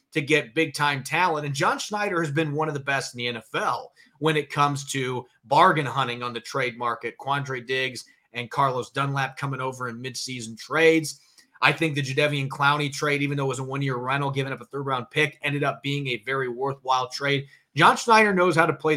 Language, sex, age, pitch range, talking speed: English, male, 30-49, 135-165 Hz, 210 wpm